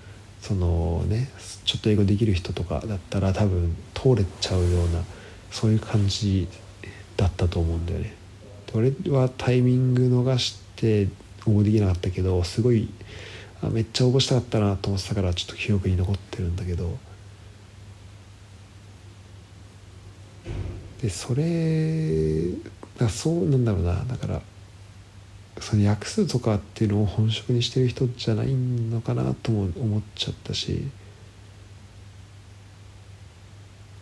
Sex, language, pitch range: male, Japanese, 95-115 Hz